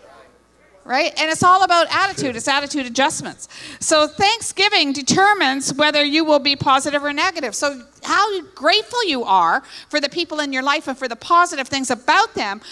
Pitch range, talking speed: 255-330 Hz, 175 wpm